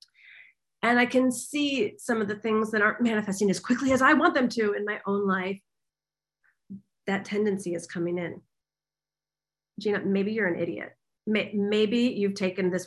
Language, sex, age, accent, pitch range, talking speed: English, female, 40-59, American, 200-300 Hz, 170 wpm